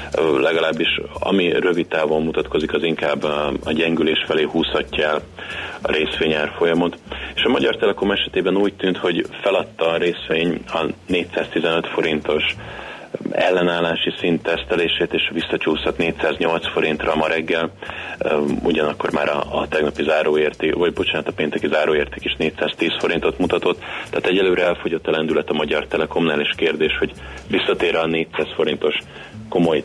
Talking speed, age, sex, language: 135 wpm, 30-49, male, Hungarian